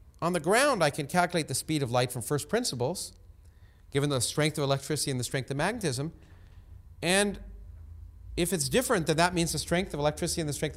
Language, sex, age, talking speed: English, male, 40-59, 205 wpm